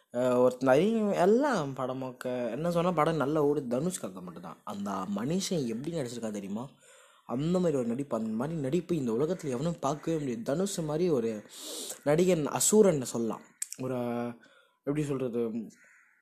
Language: Tamil